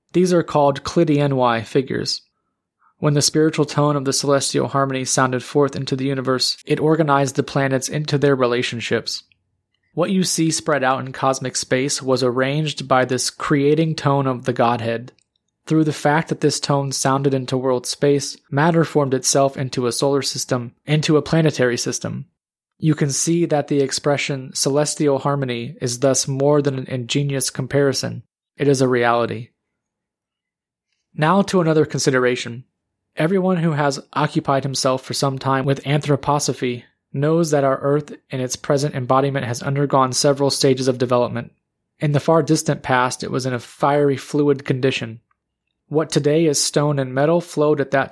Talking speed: 165 wpm